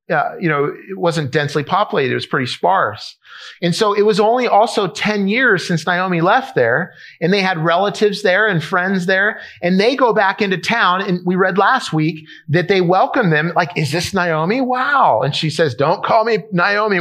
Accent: American